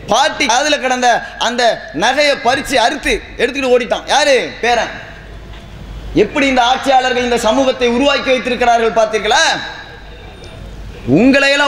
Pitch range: 250-300 Hz